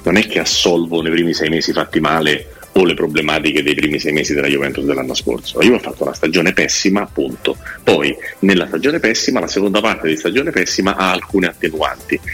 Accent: native